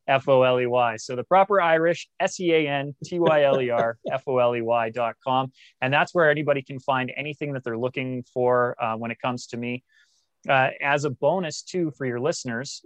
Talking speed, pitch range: 150 wpm, 115-140 Hz